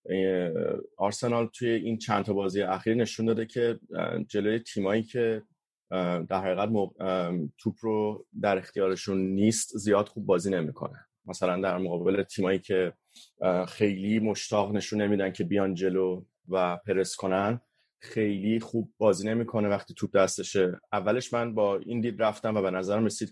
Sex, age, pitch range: male, 30-49, 95-115 Hz